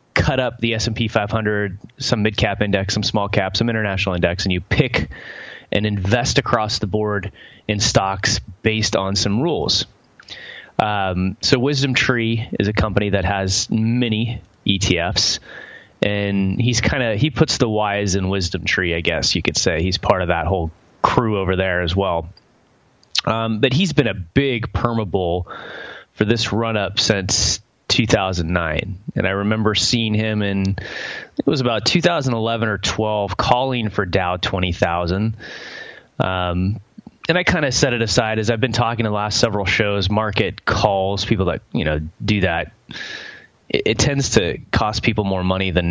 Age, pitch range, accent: 30-49, 95-115 Hz, American